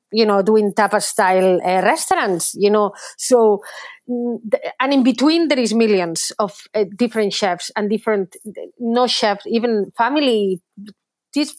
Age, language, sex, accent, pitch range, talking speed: 30-49, English, female, Spanish, 205-250 Hz, 140 wpm